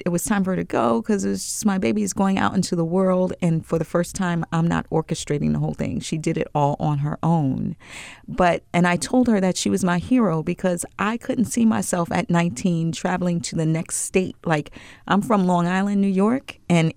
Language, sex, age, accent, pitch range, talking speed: English, female, 40-59, American, 155-185 Hz, 235 wpm